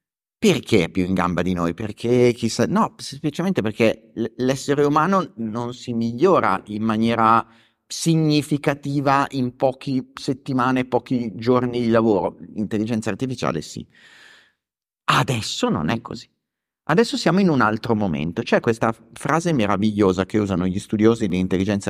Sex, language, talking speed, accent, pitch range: male, Italian, 135 wpm, native, 100-140 Hz